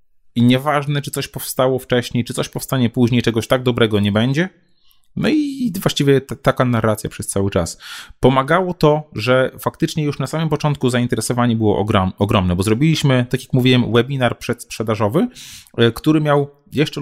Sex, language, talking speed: male, Polish, 160 wpm